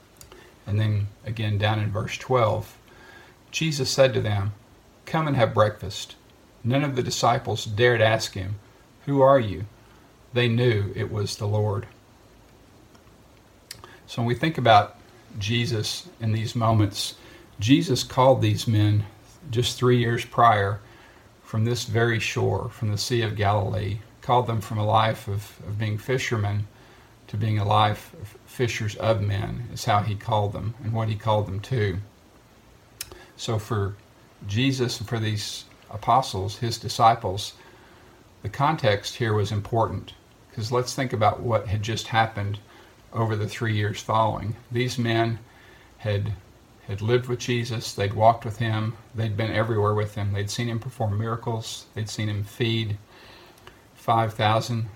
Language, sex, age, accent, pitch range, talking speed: English, male, 50-69, American, 105-120 Hz, 150 wpm